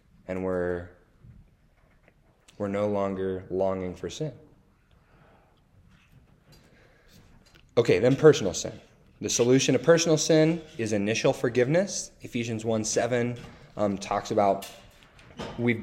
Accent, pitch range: American, 100-125 Hz